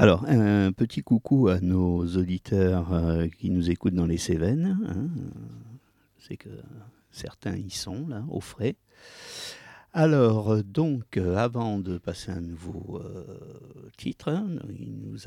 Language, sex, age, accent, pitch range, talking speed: French, male, 50-69, French, 90-130 Hz, 125 wpm